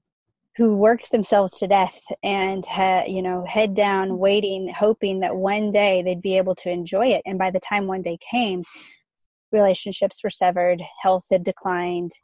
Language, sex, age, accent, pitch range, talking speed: English, female, 20-39, American, 185-210 Hz, 170 wpm